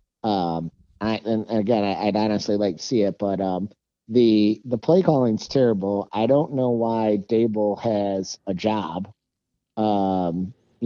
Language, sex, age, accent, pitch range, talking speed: English, male, 50-69, American, 105-135 Hz, 150 wpm